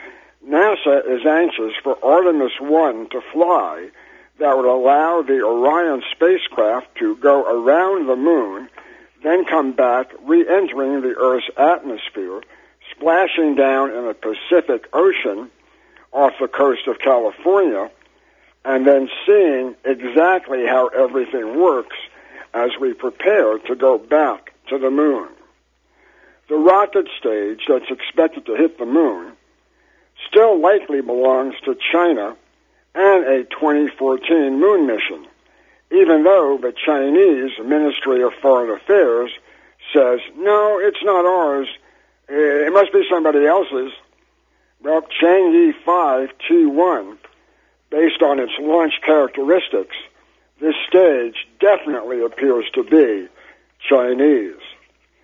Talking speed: 115 wpm